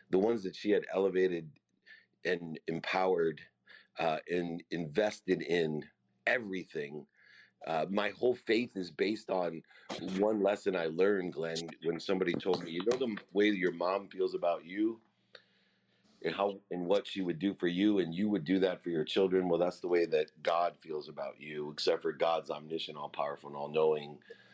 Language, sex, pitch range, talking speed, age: English, male, 80-105 Hz, 175 wpm, 40-59